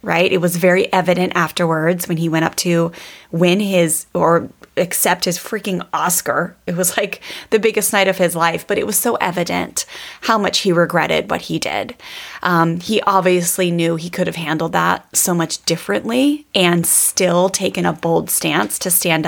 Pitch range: 170-205 Hz